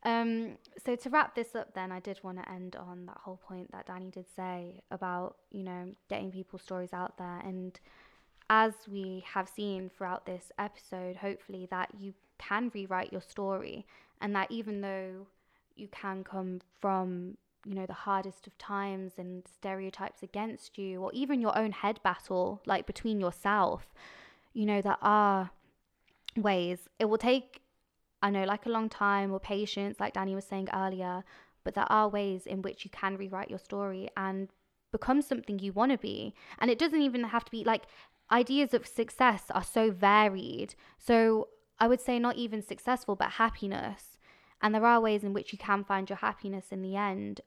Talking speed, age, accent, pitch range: 185 wpm, 20-39, British, 190-220 Hz